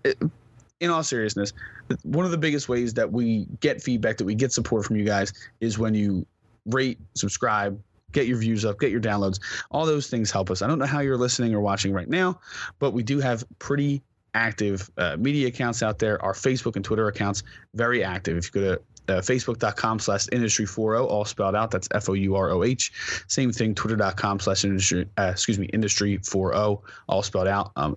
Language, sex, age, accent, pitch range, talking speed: English, male, 30-49, American, 100-120 Hz, 195 wpm